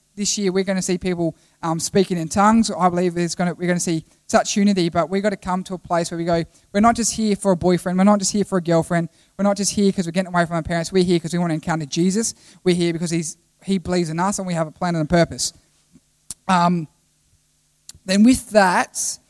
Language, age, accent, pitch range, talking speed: English, 20-39, Australian, 175-205 Hz, 265 wpm